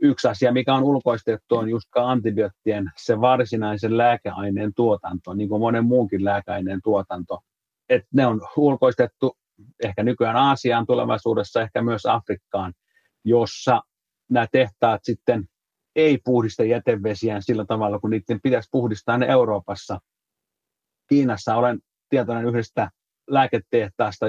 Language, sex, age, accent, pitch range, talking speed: Finnish, male, 30-49, native, 105-125 Hz, 120 wpm